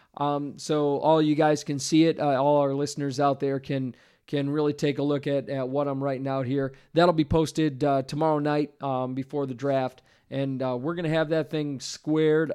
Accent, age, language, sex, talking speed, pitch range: American, 40-59, English, male, 215 wpm, 135-155 Hz